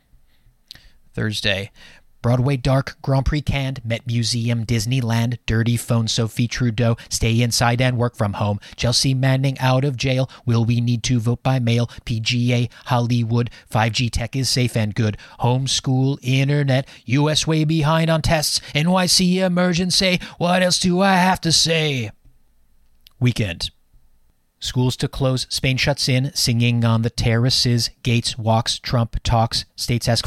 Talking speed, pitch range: 145 wpm, 115-135 Hz